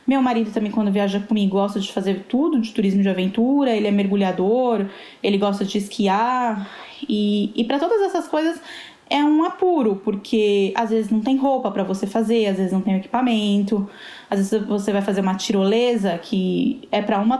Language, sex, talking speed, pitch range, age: Portuguese, female, 190 wpm, 200-255 Hz, 10-29